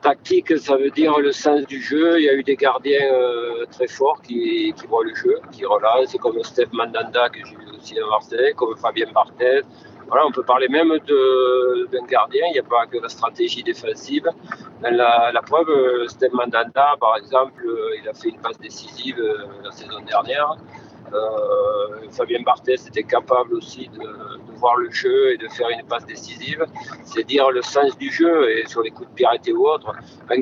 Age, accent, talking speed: 50-69, French, 200 wpm